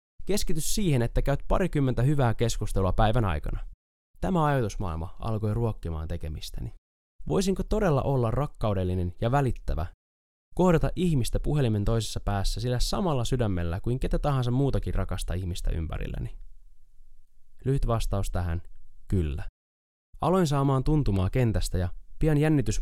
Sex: male